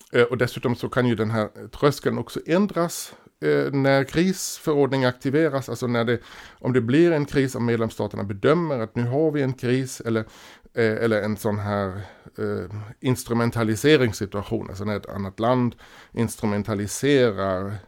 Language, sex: Swedish, male